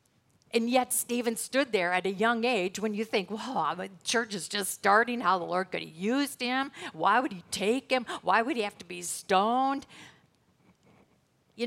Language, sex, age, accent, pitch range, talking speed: English, female, 50-69, American, 190-240 Hz, 195 wpm